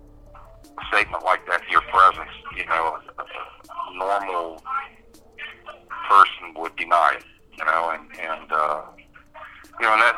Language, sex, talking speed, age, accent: English, male, 140 wpm, 50-69, American